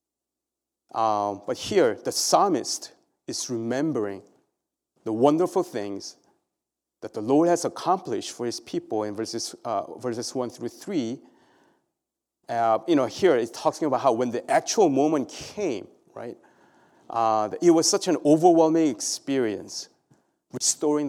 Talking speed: 135 wpm